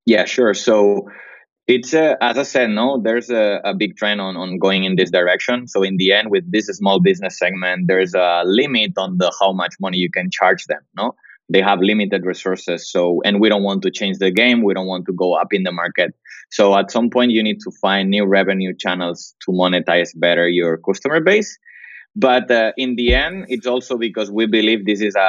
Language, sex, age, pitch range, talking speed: English, male, 20-39, 95-115 Hz, 220 wpm